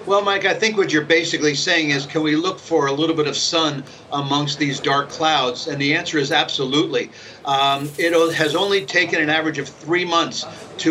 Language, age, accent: English, 50-69, American